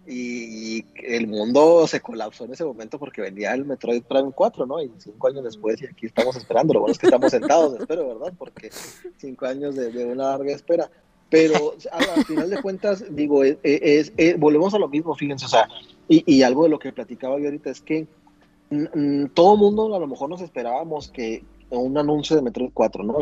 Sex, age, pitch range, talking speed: male, 30-49, 120-160 Hz, 210 wpm